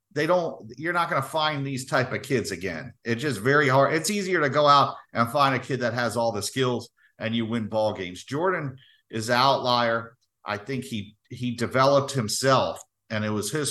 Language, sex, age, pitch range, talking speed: English, male, 50-69, 115-140 Hz, 215 wpm